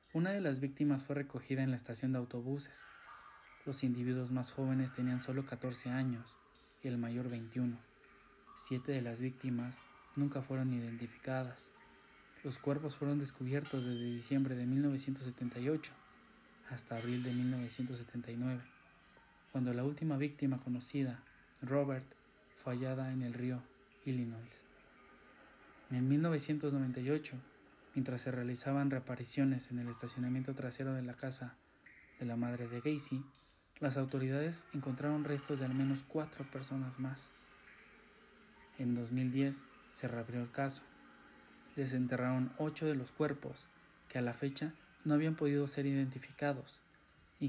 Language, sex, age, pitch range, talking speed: Spanish, male, 20-39, 125-140 Hz, 130 wpm